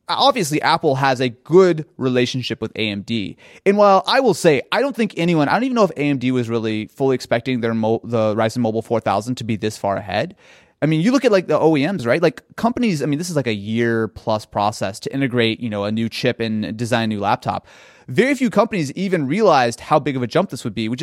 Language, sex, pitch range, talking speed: English, male, 120-175 Hz, 240 wpm